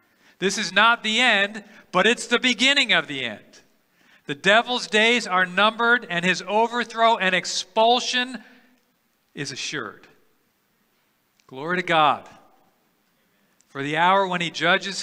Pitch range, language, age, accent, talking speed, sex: 155-195 Hz, English, 50-69, American, 130 wpm, male